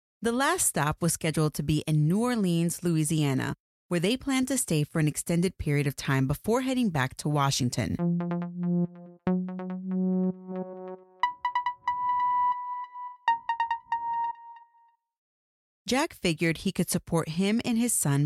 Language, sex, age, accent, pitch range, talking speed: English, female, 30-49, American, 150-210 Hz, 120 wpm